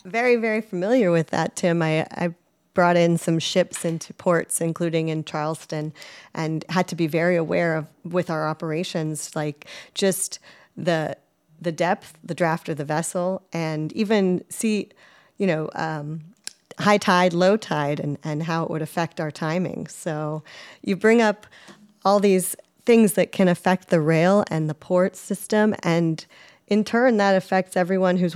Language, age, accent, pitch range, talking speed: English, 40-59, American, 165-195 Hz, 165 wpm